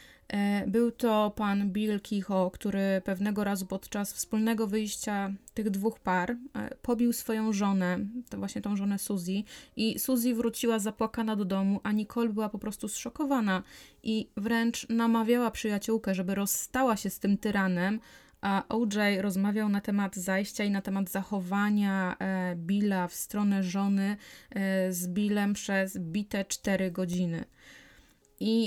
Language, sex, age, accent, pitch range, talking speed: Polish, female, 20-39, native, 195-220 Hz, 135 wpm